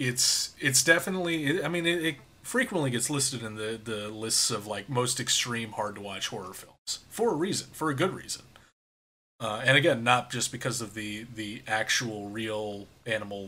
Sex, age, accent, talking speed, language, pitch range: male, 30-49, American, 185 wpm, English, 105-135 Hz